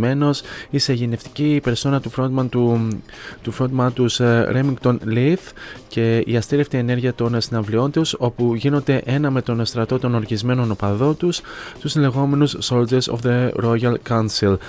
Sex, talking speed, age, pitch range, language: male, 135 wpm, 20-39, 115-130 Hz, Greek